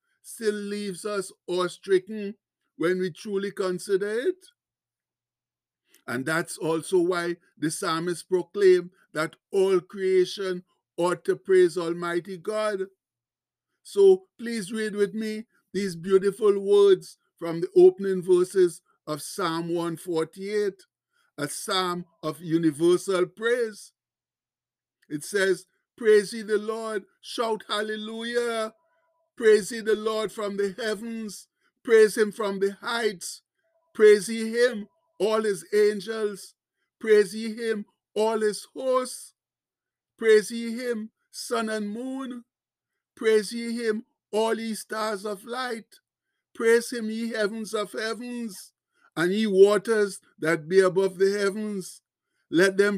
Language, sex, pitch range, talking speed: English, male, 185-225 Hz, 120 wpm